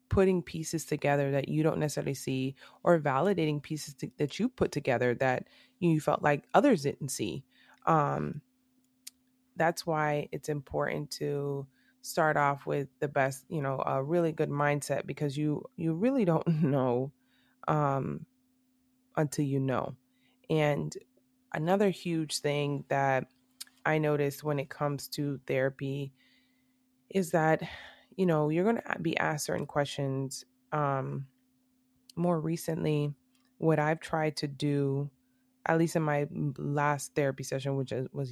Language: English